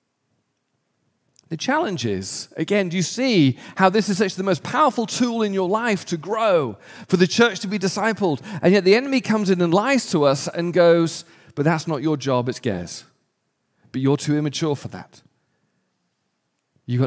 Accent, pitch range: British, 130-185 Hz